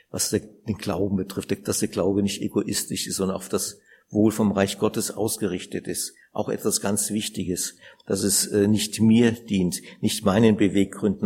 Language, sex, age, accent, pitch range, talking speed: German, male, 50-69, German, 100-125 Hz, 165 wpm